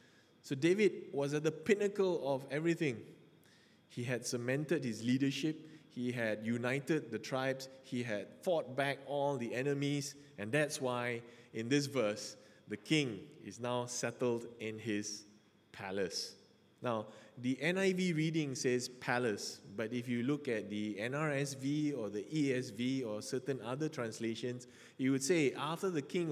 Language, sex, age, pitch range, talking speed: English, male, 20-39, 115-140 Hz, 150 wpm